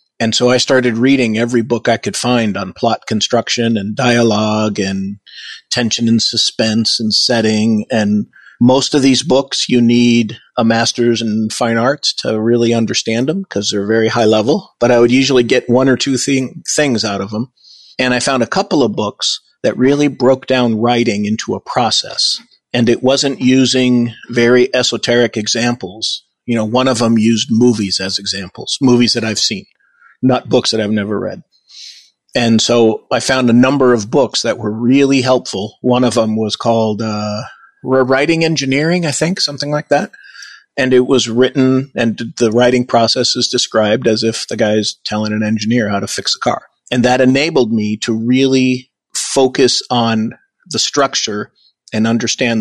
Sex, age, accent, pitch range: male, 40-59, American, 110-125 Hz